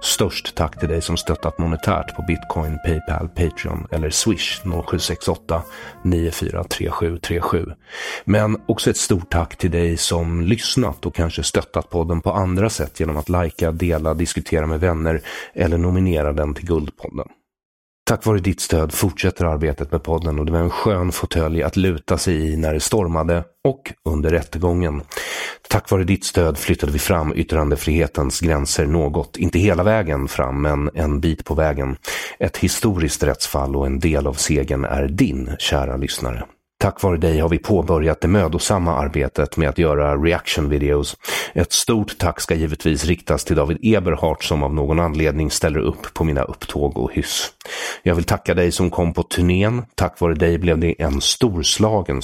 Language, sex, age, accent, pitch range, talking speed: English, male, 30-49, Swedish, 75-90 Hz, 170 wpm